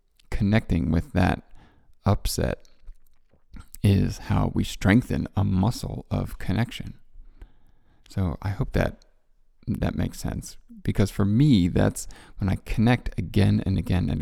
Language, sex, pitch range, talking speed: English, male, 90-110 Hz, 125 wpm